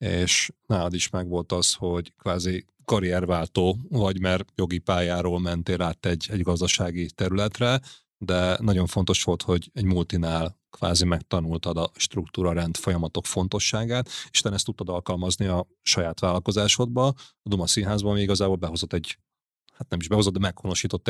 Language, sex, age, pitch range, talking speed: Hungarian, male, 30-49, 90-105 Hz, 155 wpm